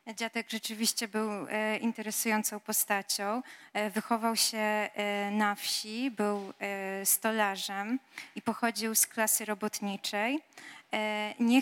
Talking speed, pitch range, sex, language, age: 90 wpm, 205-235 Hz, female, Polish, 20-39